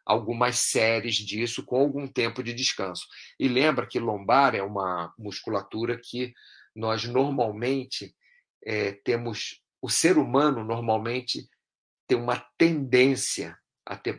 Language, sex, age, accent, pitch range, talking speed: Portuguese, male, 50-69, Brazilian, 100-125 Hz, 120 wpm